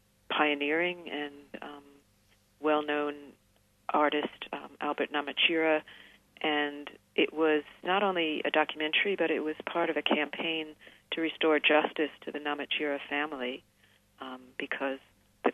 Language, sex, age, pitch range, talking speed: English, female, 50-69, 140-155 Hz, 125 wpm